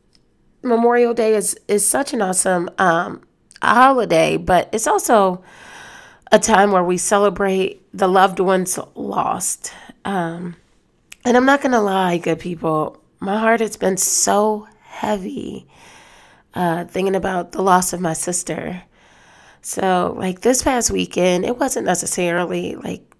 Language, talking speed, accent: English, 135 wpm, American